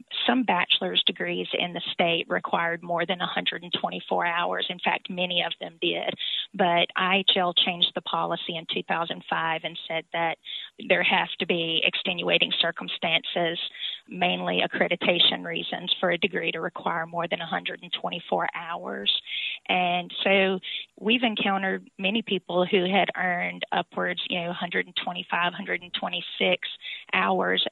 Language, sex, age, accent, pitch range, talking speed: English, female, 30-49, American, 175-200 Hz, 130 wpm